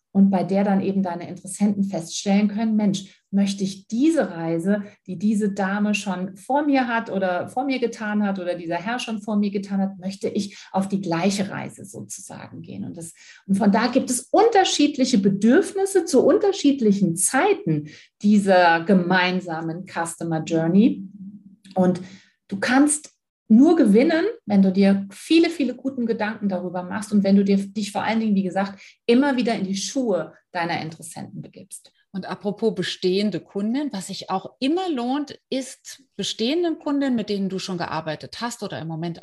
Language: German